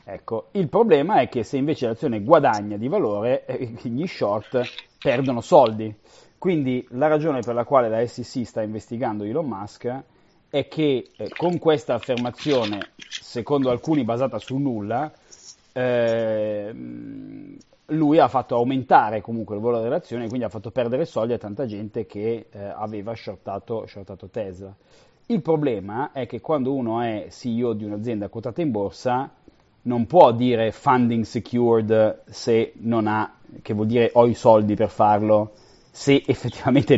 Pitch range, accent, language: 110-135 Hz, native, Italian